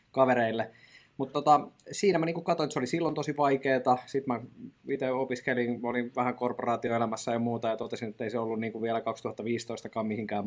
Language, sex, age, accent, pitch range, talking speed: Finnish, male, 20-39, native, 110-130 Hz, 180 wpm